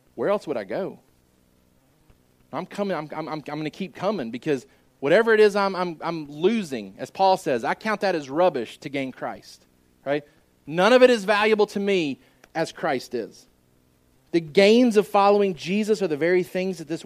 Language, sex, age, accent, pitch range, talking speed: English, male, 30-49, American, 135-195 Hz, 190 wpm